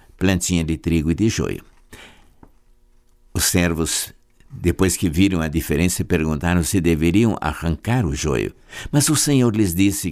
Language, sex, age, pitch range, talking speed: Portuguese, male, 60-79, 80-110 Hz, 140 wpm